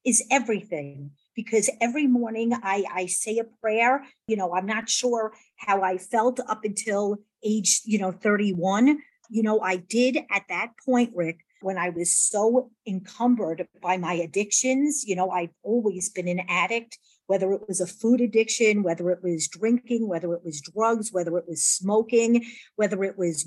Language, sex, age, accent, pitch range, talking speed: English, female, 50-69, American, 185-230 Hz, 175 wpm